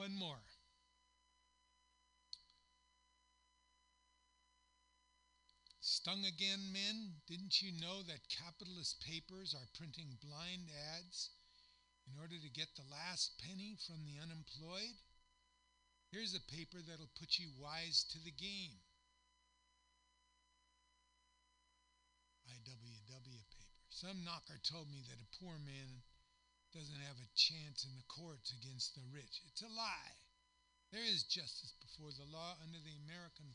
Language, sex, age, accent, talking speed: English, male, 60-79, American, 120 wpm